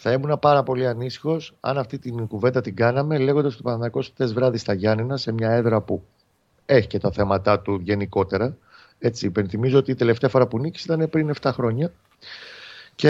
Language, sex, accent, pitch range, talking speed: Greek, male, native, 105-135 Hz, 185 wpm